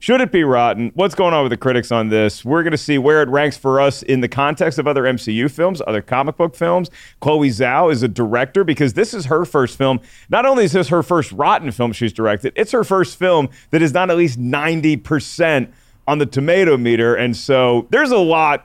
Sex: male